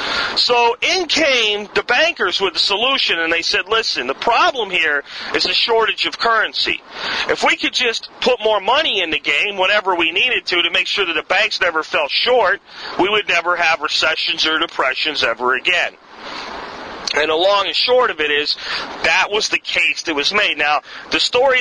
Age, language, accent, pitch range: 40-59, English, American, 165-220 Hz